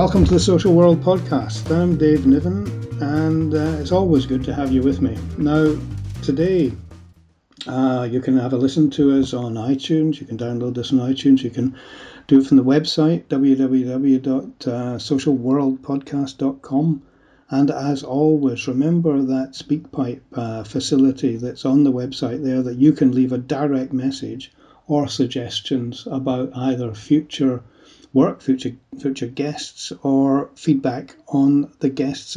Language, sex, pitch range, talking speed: English, male, 130-150 Hz, 145 wpm